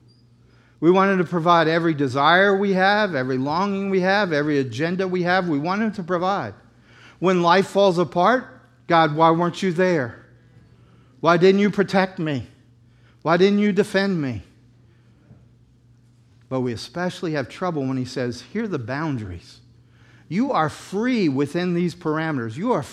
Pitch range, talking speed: 120-175 Hz, 155 wpm